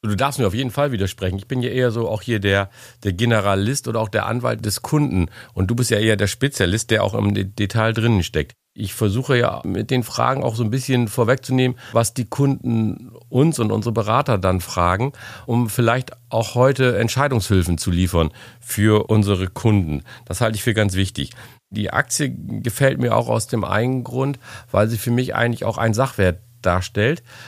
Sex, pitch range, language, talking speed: male, 100-120 Hz, German, 195 wpm